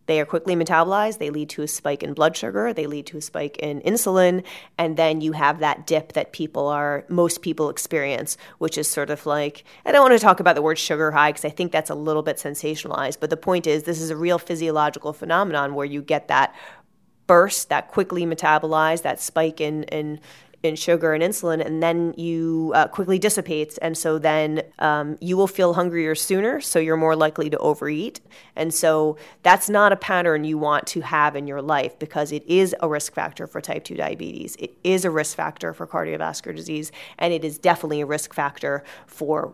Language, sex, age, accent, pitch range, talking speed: English, female, 30-49, American, 150-175 Hz, 210 wpm